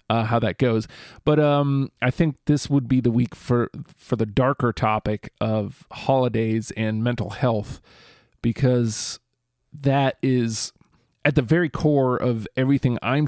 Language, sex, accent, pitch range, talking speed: English, male, American, 110-130 Hz, 150 wpm